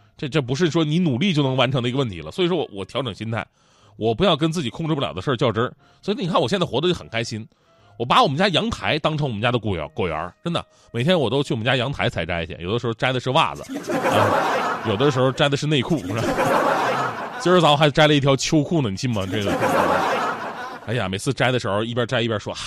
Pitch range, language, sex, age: 115-175 Hz, Chinese, male, 20-39